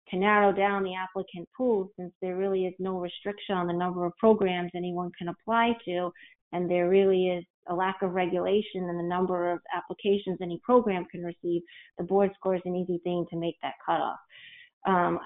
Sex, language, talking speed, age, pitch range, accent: female, English, 195 wpm, 30-49, 180-205 Hz, American